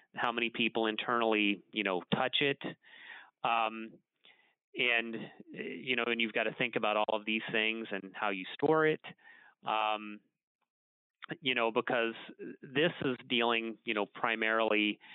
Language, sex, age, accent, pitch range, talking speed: English, male, 30-49, American, 100-115 Hz, 145 wpm